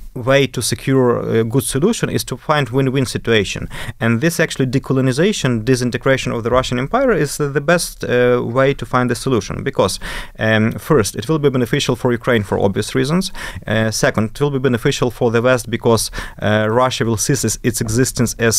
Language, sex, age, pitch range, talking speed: English, male, 30-49, 115-145 Hz, 185 wpm